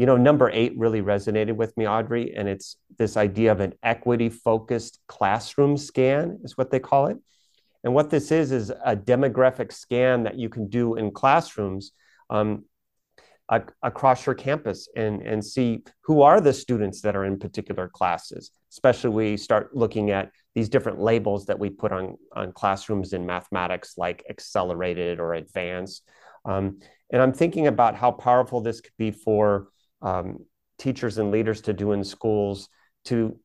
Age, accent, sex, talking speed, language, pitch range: 30-49, American, male, 165 wpm, English, 105-130 Hz